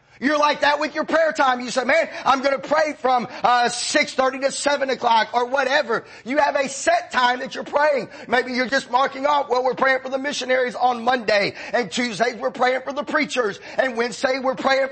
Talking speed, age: 215 wpm, 30-49